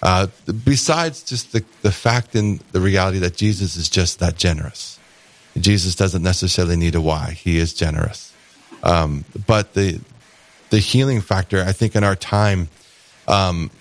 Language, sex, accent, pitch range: English, male, American, 90-105 Hz